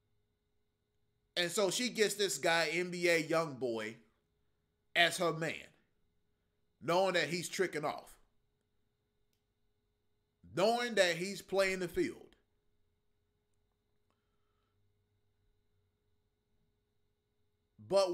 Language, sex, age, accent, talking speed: English, male, 30-49, American, 80 wpm